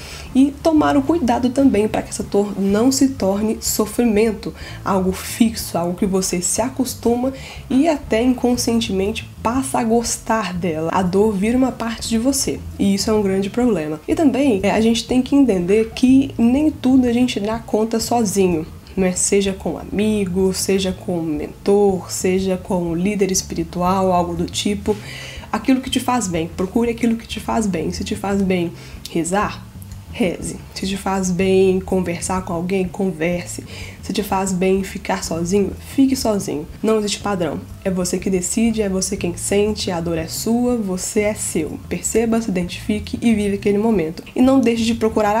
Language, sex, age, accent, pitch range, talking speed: Portuguese, female, 10-29, Brazilian, 185-230 Hz, 180 wpm